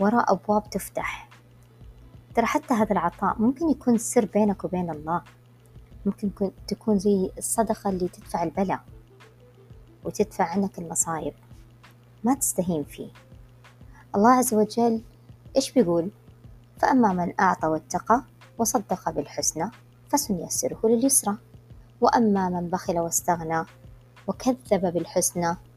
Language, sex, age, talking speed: Arabic, male, 20-39, 105 wpm